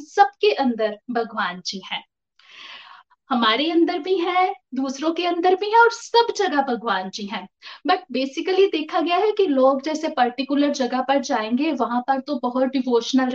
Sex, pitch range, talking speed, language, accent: female, 255-360 Hz, 165 wpm, Hindi, native